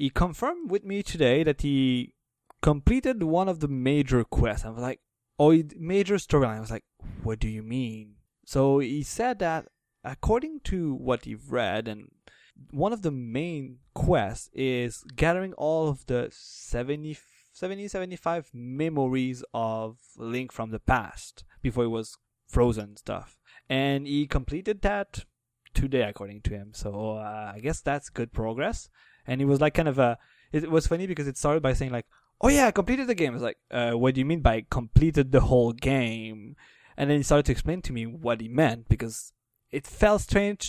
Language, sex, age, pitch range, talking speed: English, male, 20-39, 120-165 Hz, 185 wpm